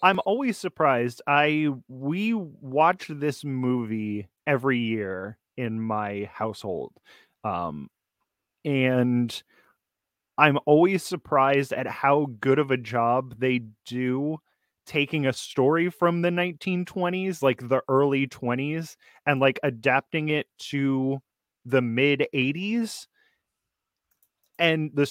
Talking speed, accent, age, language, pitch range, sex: 110 wpm, American, 20-39, English, 125-155 Hz, male